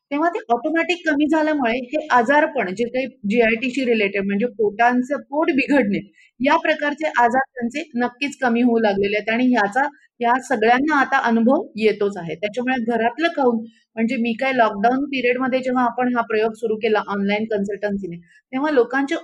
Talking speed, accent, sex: 170 wpm, native, female